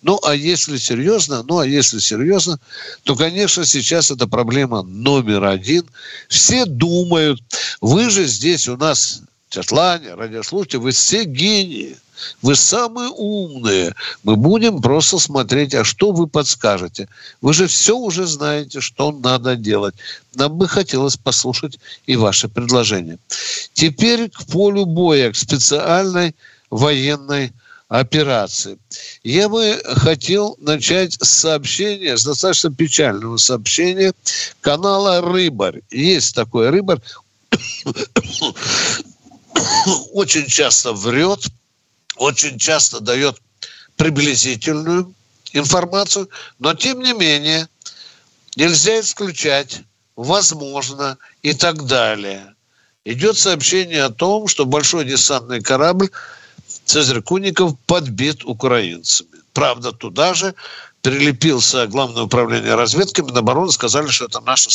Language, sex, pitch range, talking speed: Russian, male, 125-180 Hz, 110 wpm